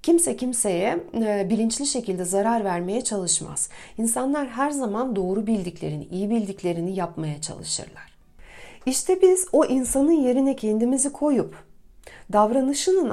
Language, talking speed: Turkish, 110 wpm